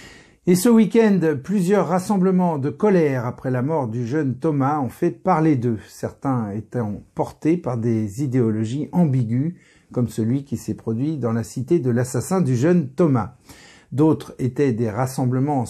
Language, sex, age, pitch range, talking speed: French, male, 50-69, 120-160 Hz, 155 wpm